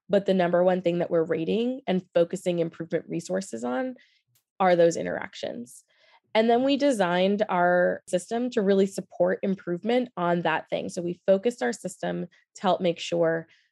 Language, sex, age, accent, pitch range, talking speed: English, female, 20-39, American, 170-205 Hz, 165 wpm